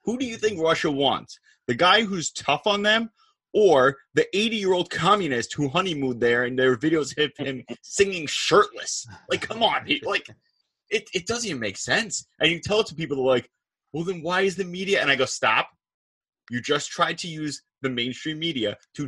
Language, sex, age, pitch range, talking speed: English, male, 30-49, 120-175 Hz, 200 wpm